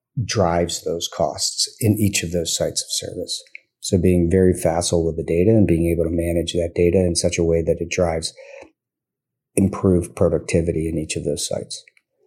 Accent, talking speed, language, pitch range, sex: American, 185 wpm, English, 85-105 Hz, male